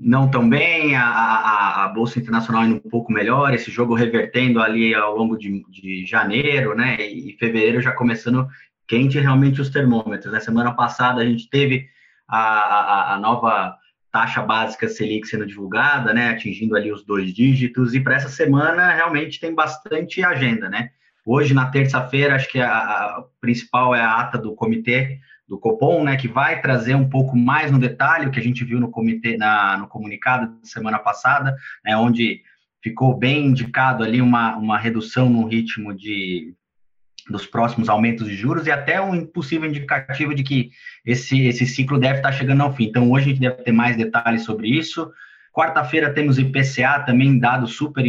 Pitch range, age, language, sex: 115-135 Hz, 20-39, Portuguese, male